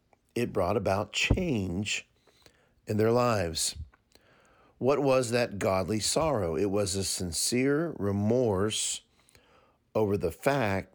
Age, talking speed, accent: 50-69, 110 wpm, American